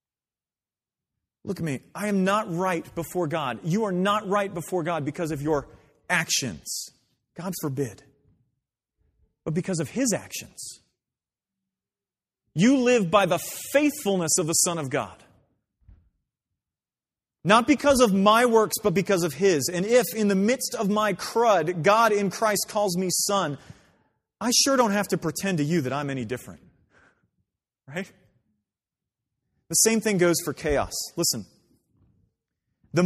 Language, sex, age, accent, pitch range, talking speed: English, male, 40-59, American, 145-200 Hz, 145 wpm